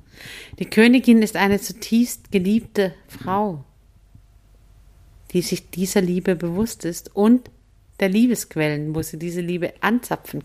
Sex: female